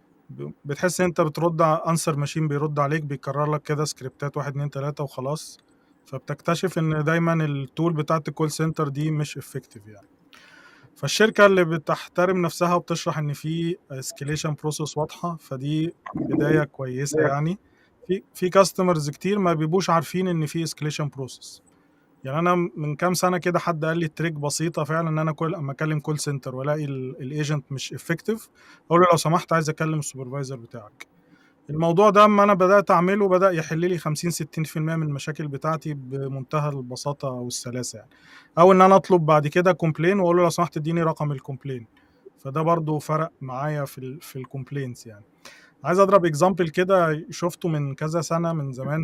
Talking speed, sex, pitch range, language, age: 160 wpm, male, 145-170 Hz, Arabic, 20-39